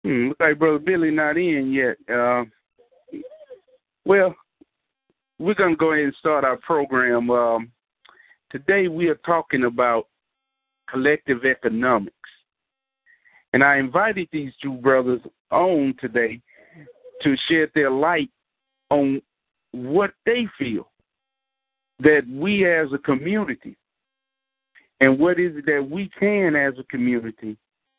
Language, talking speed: English, 120 wpm